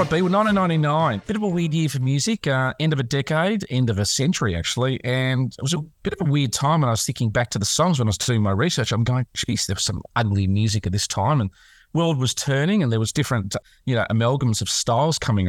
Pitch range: 105-135 Hz